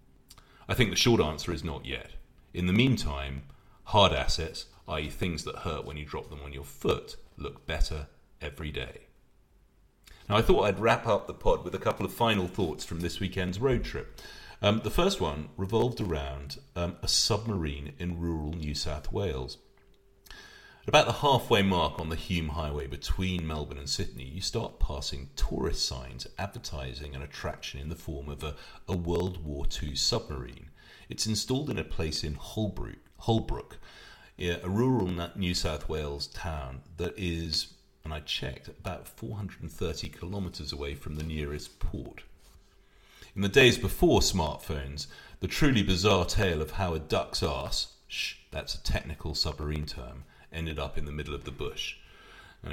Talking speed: 165 wpm